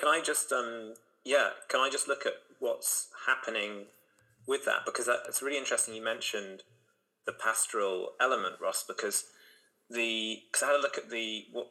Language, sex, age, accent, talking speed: English, male, 30-49, British, 180 wpm